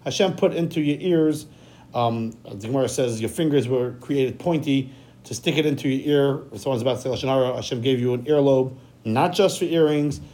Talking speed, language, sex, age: 185 wpm, English, male, 40-59